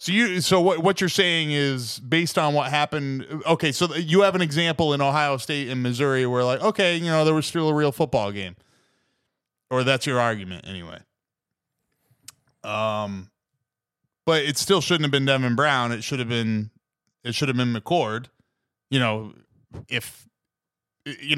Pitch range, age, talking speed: 120-150 Hz, 20-39, 175 wpm